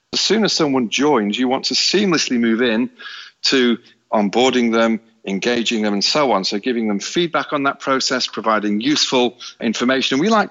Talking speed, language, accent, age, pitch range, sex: 185 wpm, English, British, 40-59, 105-130 Hz, male